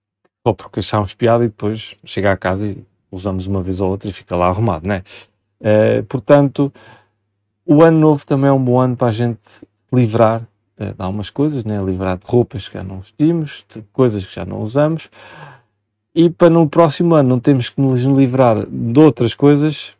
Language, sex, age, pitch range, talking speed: Portuguese, male, 40-59, 100-120 Hz, 195 wpm